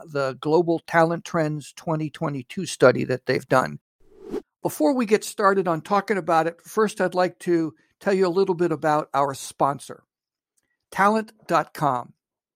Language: English